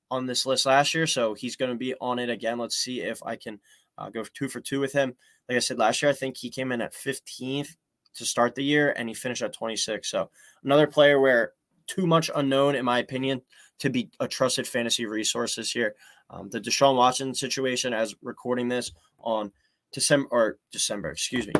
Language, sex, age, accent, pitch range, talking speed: English, male, 20-39, American, 120-140 Hz, 215 wpm